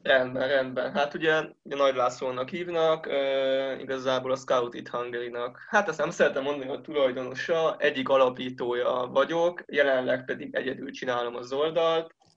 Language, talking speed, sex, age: Hungarian, 150 wpm, male, 20-39